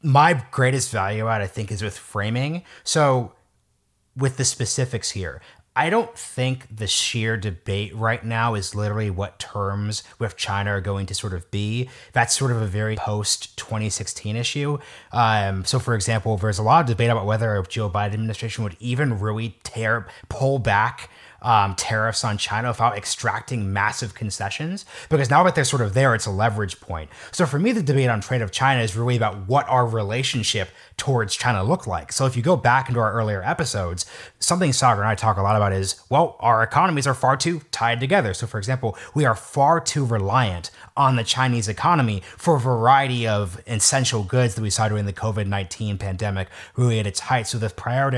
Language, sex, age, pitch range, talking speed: English, male, 30-49, 105-130 Hz, 195 wpm